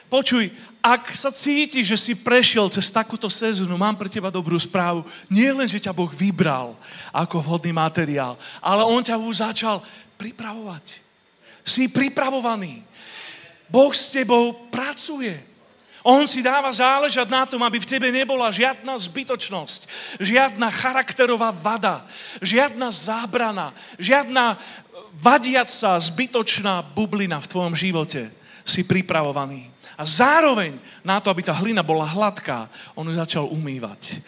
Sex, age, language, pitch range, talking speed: male, 40-59, Slovak, 170-240 Hz, 130 wpm